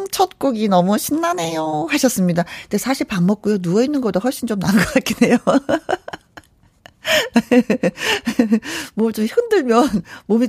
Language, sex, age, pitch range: Korean, female, 40-59, 185-260 Hz